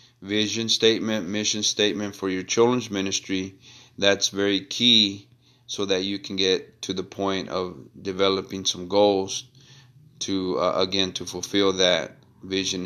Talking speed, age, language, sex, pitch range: 140 wpm, 30-49, English, male, 95-115 Hz